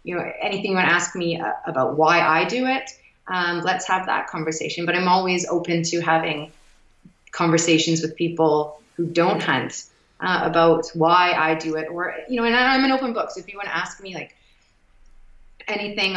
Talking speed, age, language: 195 wpm, 30-49, English